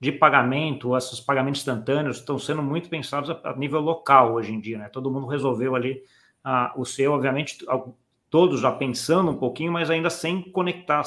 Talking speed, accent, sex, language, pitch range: 190 wpm, Brazilian, male, Portuguese, 125-155 Hz